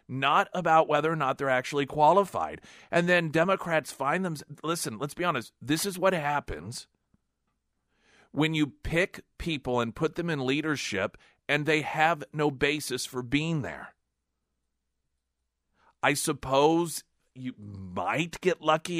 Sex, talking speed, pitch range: male, 140 wpm, 100-150 Hz